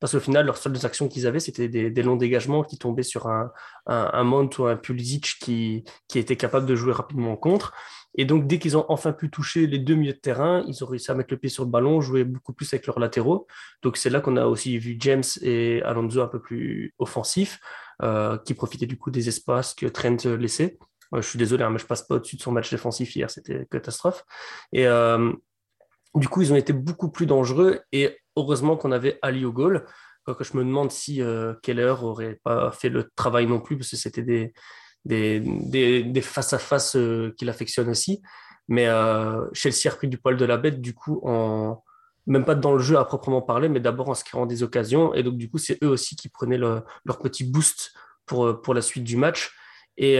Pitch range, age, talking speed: 120-145 Hz, 20-39, 230 wpm